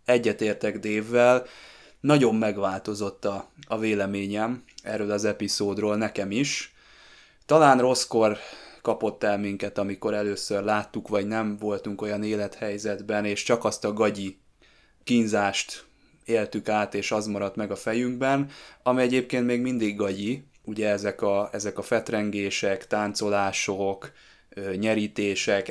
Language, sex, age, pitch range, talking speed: Hungarian, male, 20-39, 100-115 Hz, 120 wpm